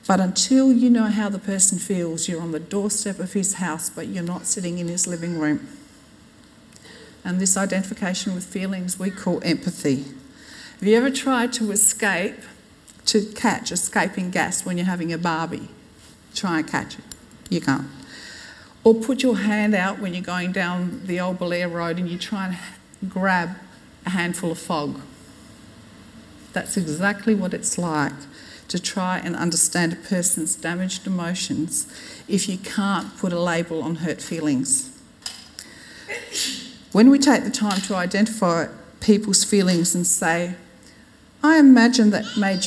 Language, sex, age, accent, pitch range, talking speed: English, female, 50-69, Australian, 175-220 Hz, 155 wpm